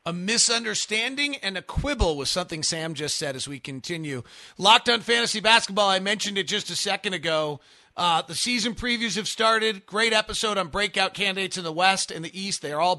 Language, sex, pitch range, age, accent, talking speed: English, male, 155-200 Hz, 40-59, American, 205 wpm